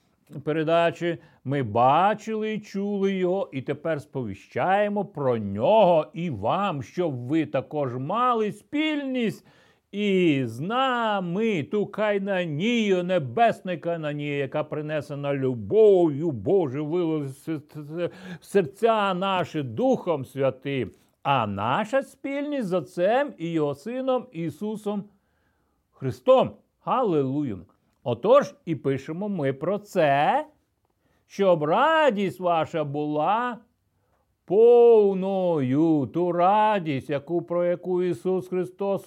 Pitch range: 140-200 Hz